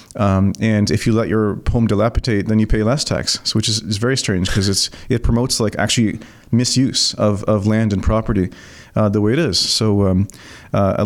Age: 30-49